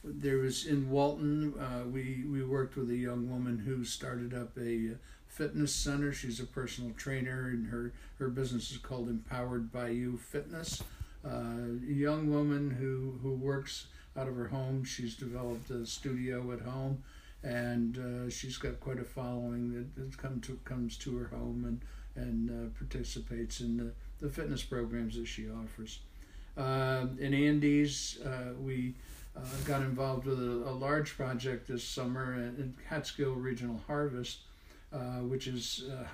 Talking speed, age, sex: 165 wpm, 60-79, male